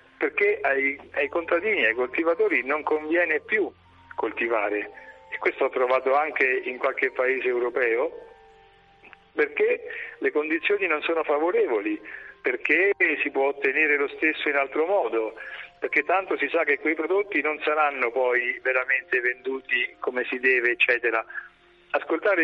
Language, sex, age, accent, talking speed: Italian, male, 40-59, native, 135 wpm